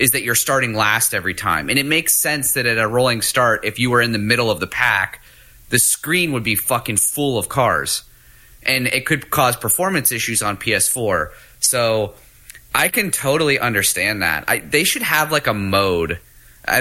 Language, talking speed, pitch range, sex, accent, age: English, 195 wpm, 100-125 Hz, male, American, 30-49